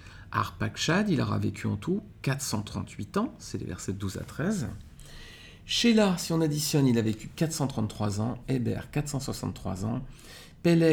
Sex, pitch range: male, 110-150 Hz